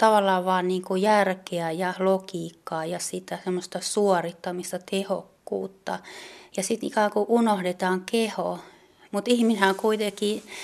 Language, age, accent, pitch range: Finnish, 30-49, native, 185-205 Hz